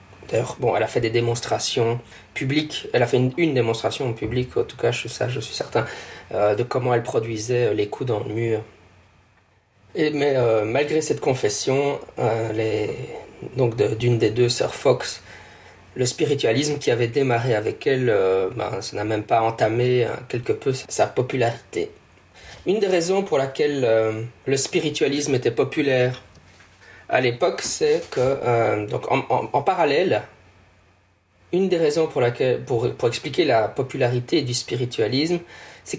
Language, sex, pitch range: French, male, 105-135 Hz